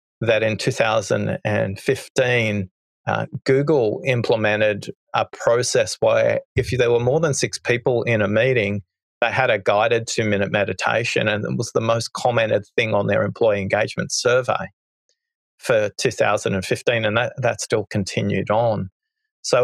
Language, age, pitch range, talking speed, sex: English, 30-49, 105-150 Hz, 140 wpm, male